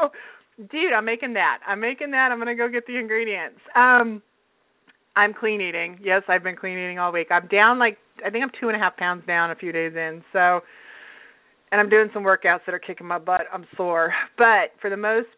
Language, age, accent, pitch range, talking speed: English, 30-49, American, 180-235 Hz, 220 wpm